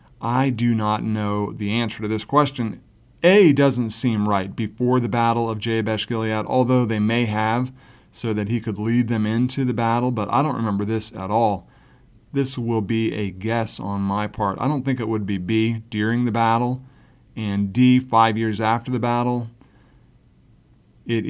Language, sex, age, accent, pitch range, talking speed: English, male, 40-59, American, 110-135 Hz, 185 wpm